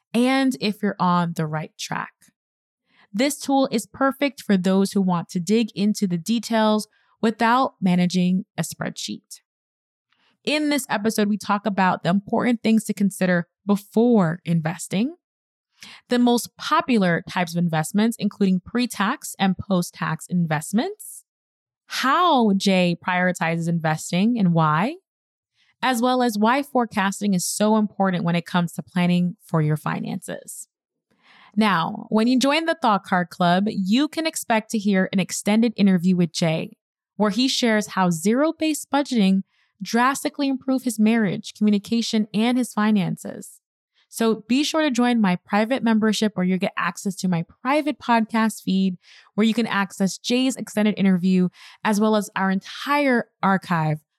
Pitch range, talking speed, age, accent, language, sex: 180-235 Hz, 145 wpm, 20-39, American, English, female